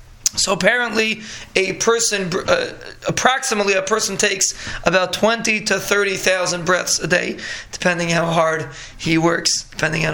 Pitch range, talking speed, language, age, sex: 170-205 Hz, 150 wpm, English, 20-39, male